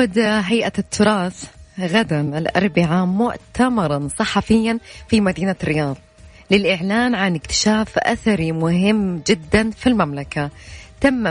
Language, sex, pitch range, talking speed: Arabic, female, 160-215 Hz, 95 wpm